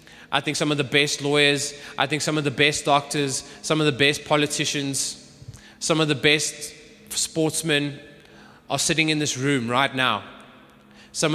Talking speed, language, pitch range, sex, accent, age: 170 wpm, English, 125-150 Hz, male, Australian, 20-39